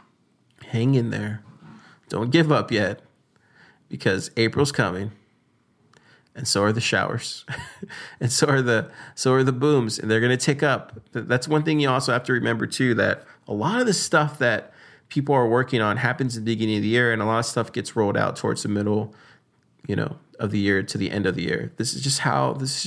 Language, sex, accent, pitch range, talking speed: English, male, American, 110-135 Hz, 220 wpm